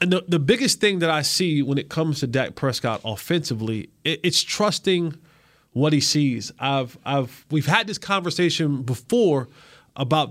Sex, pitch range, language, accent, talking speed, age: male, 135-160 Hz, English, American, 170 wpm, 20-39